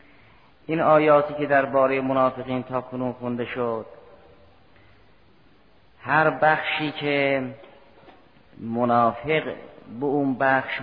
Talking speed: 90 wpm